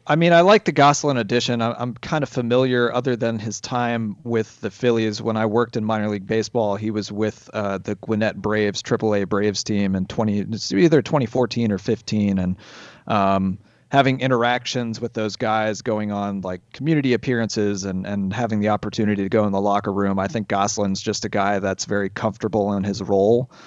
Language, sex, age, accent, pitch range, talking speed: English, male, 30-49, American, 100-120 Hz, 200 wpm